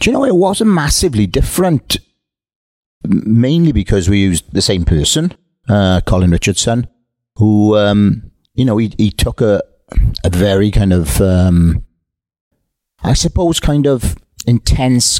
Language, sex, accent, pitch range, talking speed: English, male, British, 90-115 Hz, 140 wpm